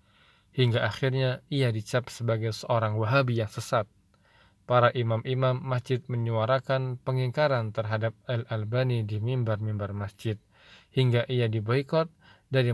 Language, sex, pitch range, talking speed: Indonesian, male, 110-125 Hz, 110 wpm